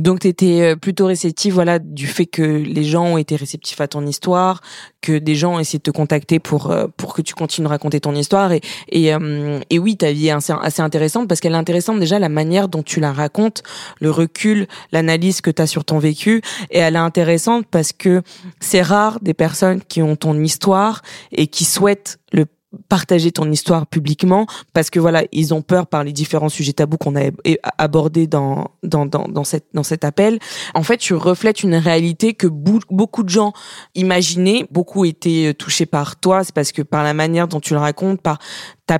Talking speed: 205 wpm